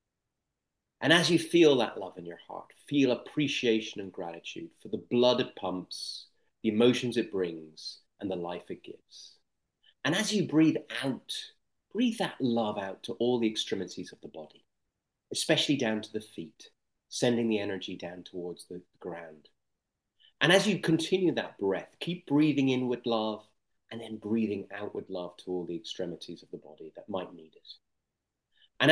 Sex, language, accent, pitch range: male, English, British, 105-140 Hz